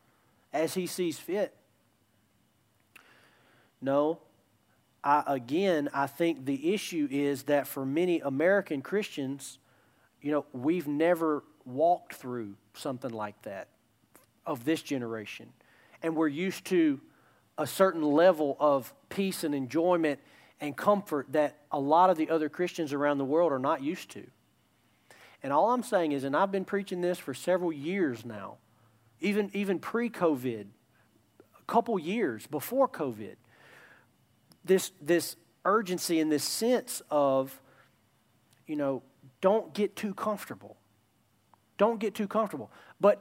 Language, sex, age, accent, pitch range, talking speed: English, male, 40-59, American, 135-190 Hz, 135 wpm